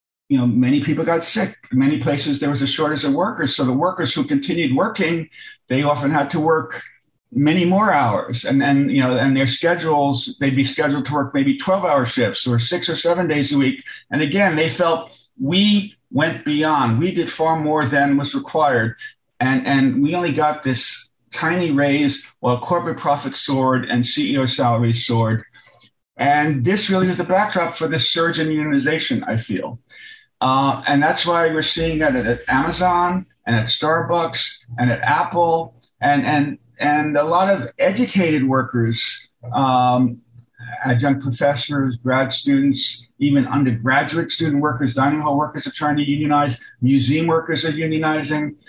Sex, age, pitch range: male, 50-69, 135-165 Hz